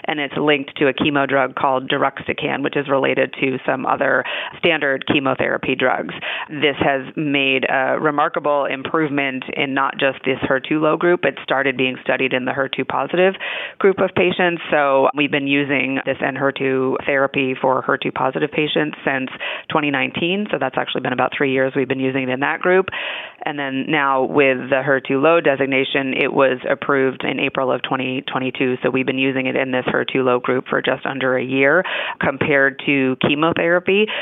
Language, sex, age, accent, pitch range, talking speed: English, female, 30-49, American, 130-150 Hz, 180 wpm